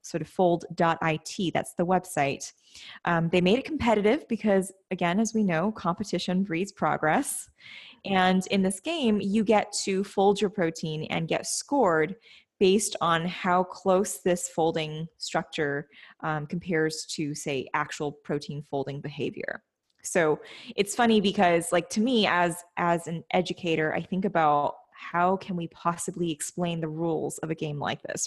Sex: female